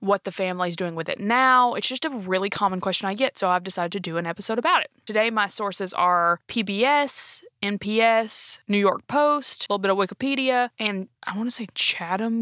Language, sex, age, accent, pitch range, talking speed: English, female, 20-39, American, 180-230 Hz, 215 wpm